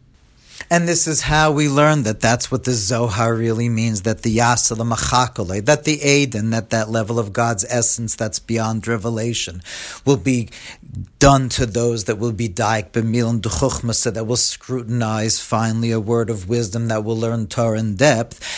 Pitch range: 115-140 Hz